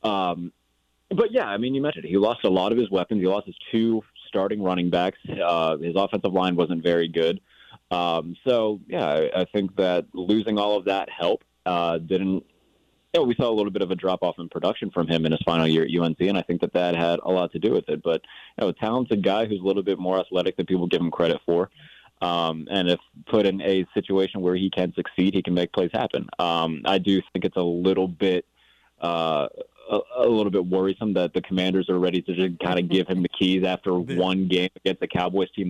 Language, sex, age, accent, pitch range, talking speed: English, male, 30-49, American, 90-100 Hz, 230 wpm